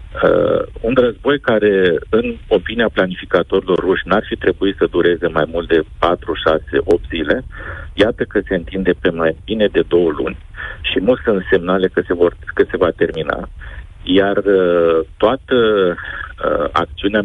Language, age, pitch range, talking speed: Romanian, 50-69, 90-125 Hz, 155 wpm